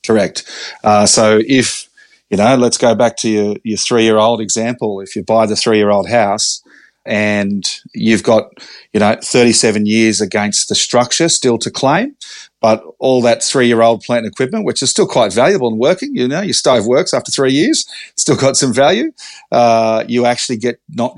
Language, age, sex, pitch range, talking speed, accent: English, 40-59, male, 105-120 Hz, 180 wpm, Australian